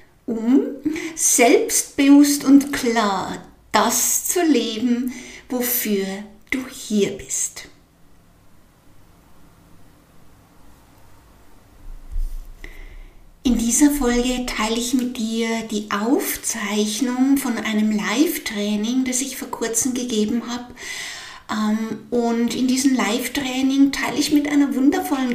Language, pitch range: German, 215-275 Hz